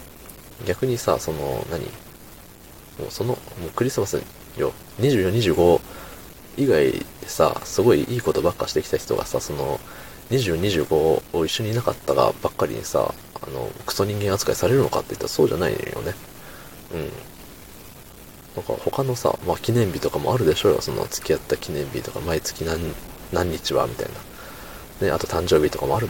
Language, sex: Japanese, male